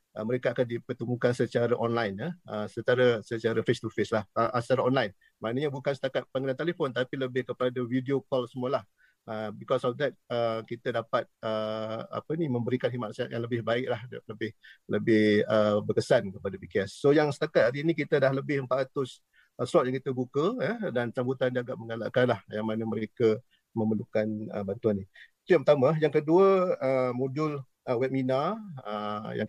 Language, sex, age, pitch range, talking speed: Malay, male, 50-69, 110-130 Hz, 170 wpm